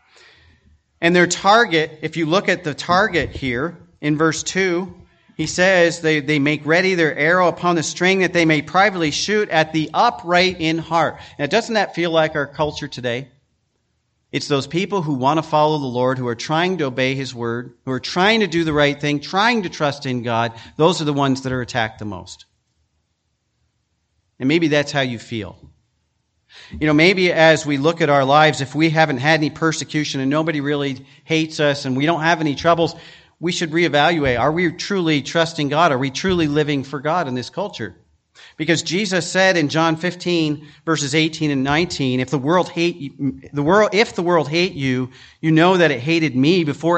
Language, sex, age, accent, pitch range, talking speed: English, male, 40-59, American, 140-170 Hz, 200 wpm